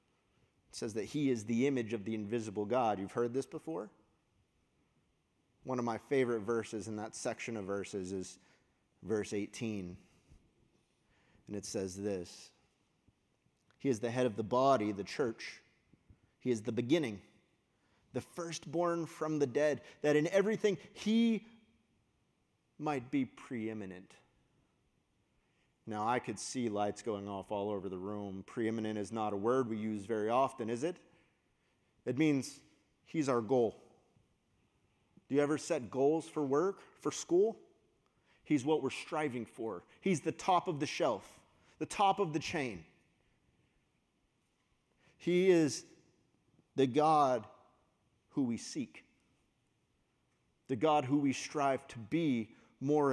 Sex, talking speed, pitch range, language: male, 140 wpm, 110-150 Hz, English